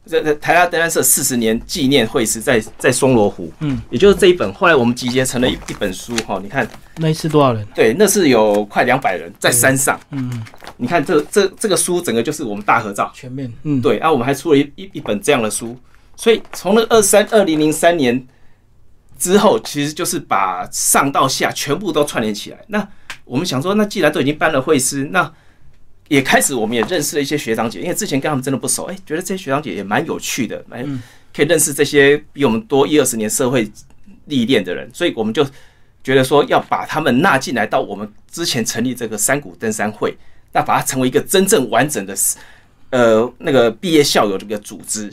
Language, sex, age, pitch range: Chinese, male, 30-49, 115-155 Hz